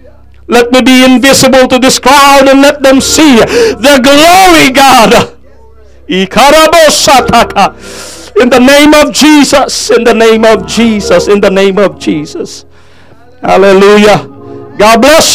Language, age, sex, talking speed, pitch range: English, 50-69, male, 125 wpm, 210-260 Hz